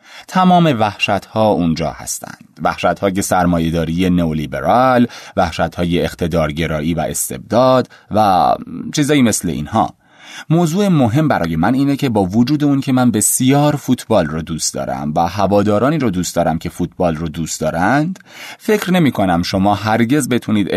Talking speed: 140 wpm